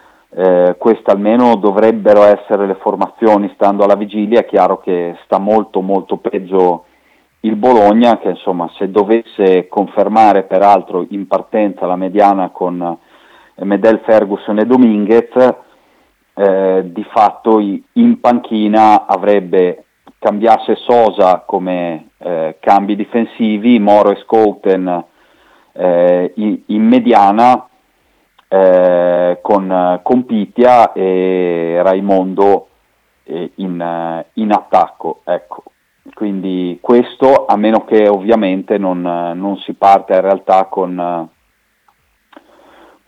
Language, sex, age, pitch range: Italian, male, 30-49, 90-110 Hz